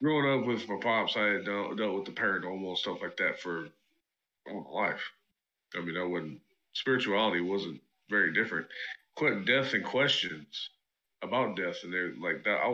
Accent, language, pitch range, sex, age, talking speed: American, English, 90-110 Hz, male, 20-39, 175 wpm